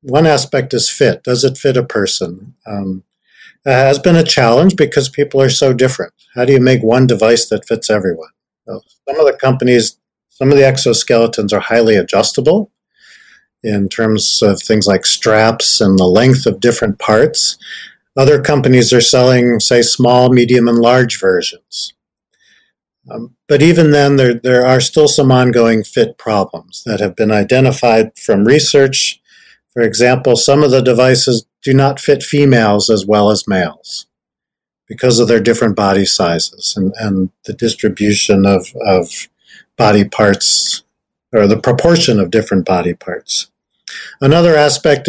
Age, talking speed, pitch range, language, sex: 50-69, 155 wpm, 110-140 Hz, English, male